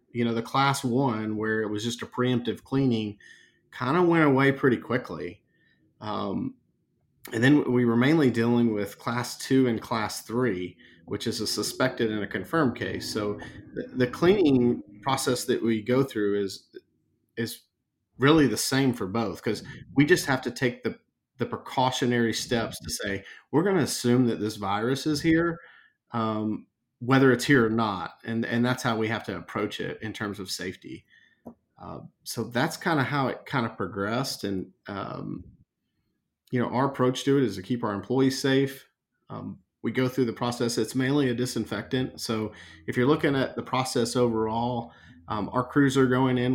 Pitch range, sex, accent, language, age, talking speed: 110-130 Hz, male, American, English, 40-59, 185 wpm